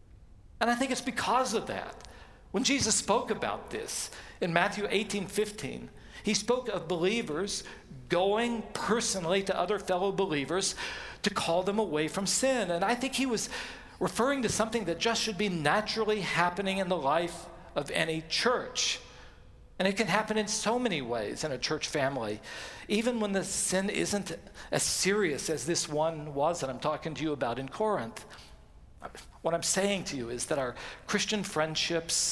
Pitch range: 165-210 Hz